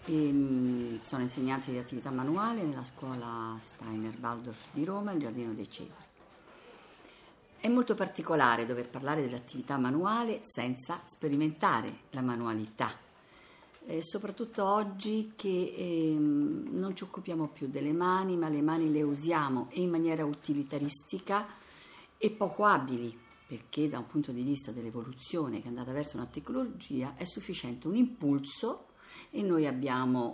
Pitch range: 130-205 Hz